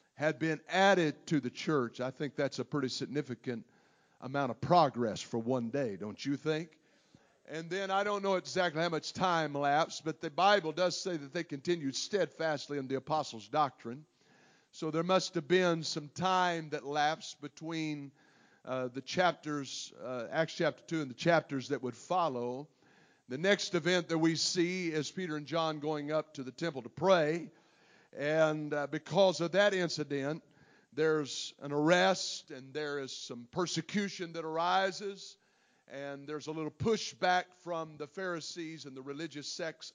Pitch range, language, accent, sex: 145-180 Hz, English, American, male